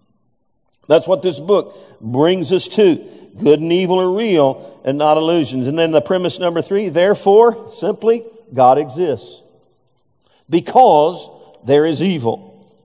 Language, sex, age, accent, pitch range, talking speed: English, male, 50-69, American, 150-205 Hz, 135 wpm